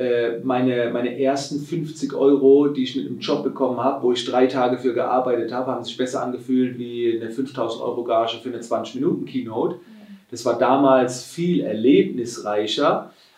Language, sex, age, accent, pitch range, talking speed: German, male, 30-49, German, 130-160 Hz, 170 wpm